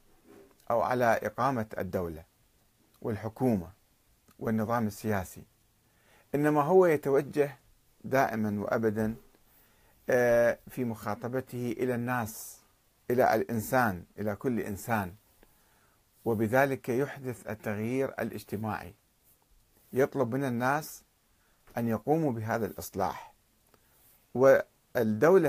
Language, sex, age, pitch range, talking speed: Arabic, male, 50-69, 110-140 Hz, 80 wpm